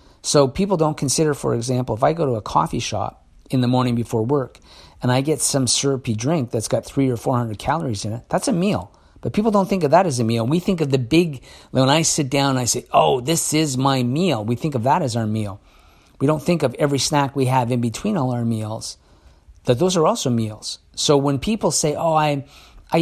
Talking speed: 240 wpm